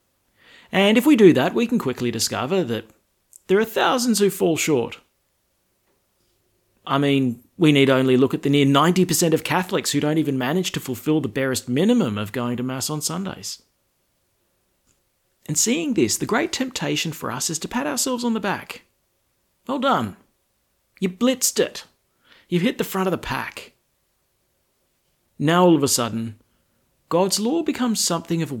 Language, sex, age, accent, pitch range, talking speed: English, male, 40-59, Australian, 120-185 Hz, 170 wpm